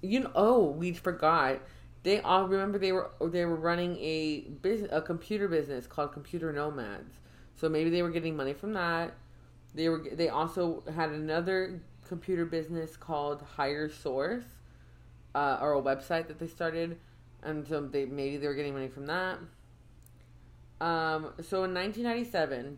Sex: female